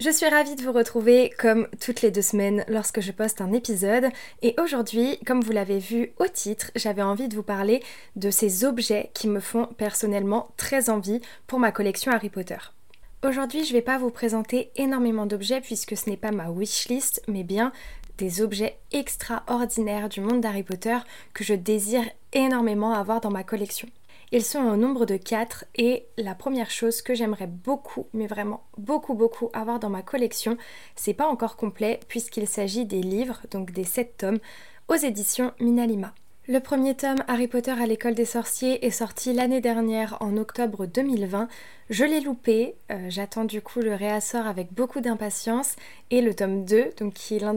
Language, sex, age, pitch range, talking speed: French, female, 20-39, 210-245 Hz, 185 wpm